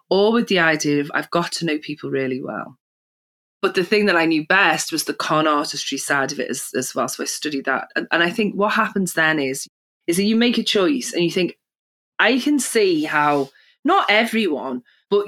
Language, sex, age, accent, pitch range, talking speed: English, female, 30-49, British, 150-205 Hz, 225 wpm